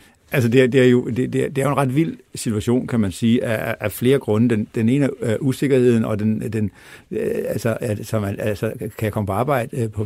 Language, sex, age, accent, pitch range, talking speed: Danish, male, 60-79, native, 110-130 Hz, 190 wpm